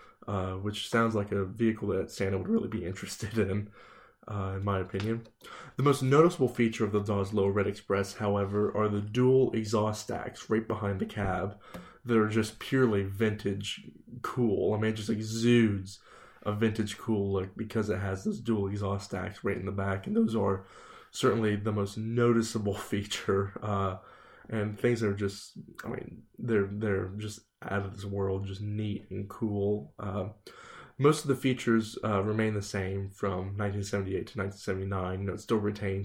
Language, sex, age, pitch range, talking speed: English, male, 20-39, 100-110 Hz, 165 wpm